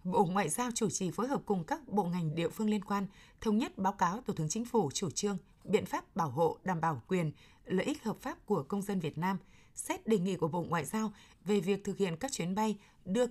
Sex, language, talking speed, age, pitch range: female, Vietnamese, 250 wpm, 20-39, 180-220 Hz